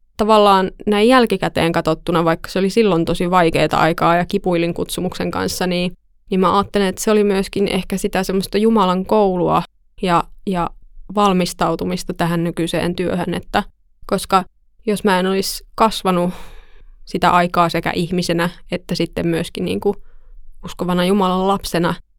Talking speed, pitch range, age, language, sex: 140 wpm, 175-195 Hz, 20-39, Finnish, female